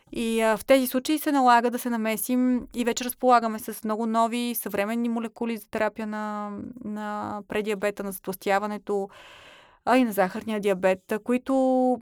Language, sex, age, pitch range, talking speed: Bulgarian, female, 20-39, 205-245 Hz, 150 wpm